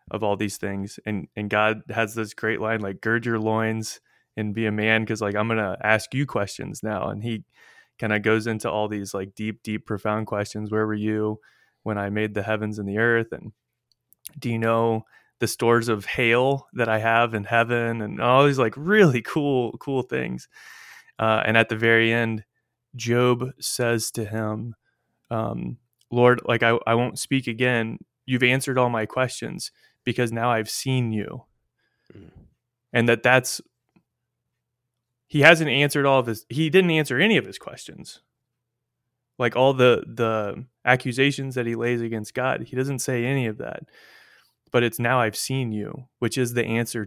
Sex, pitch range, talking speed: male, 110-125 Hz, 180 wpm